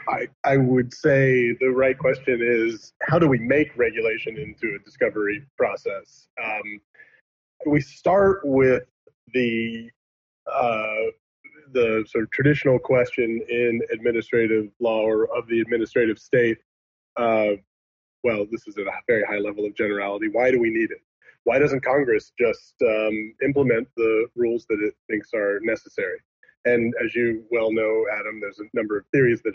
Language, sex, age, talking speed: English, male, 20-39, 155 wpm